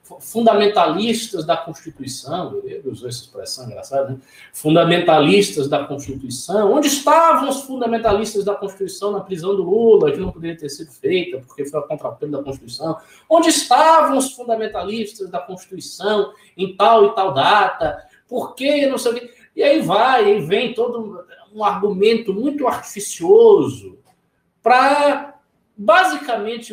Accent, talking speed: Brazilian, 150 wpm